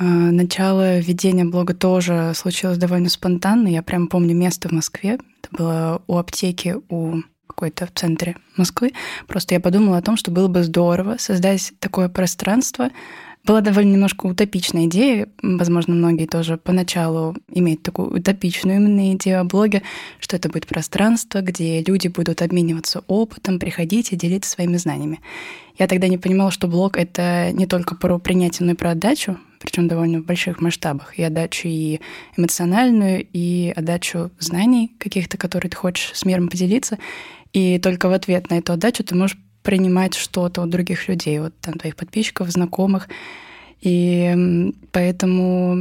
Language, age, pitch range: Russian, 20-39, 175-195 Hz